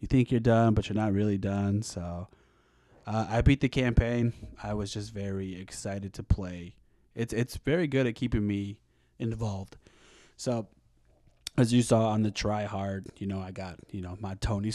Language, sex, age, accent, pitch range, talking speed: English, male, 20-39, American, 95-115 Hz, 185 wpm